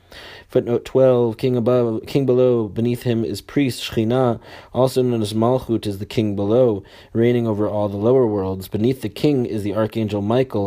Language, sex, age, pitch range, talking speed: English, male, 30-49, 95-120 Hz, 180 wpm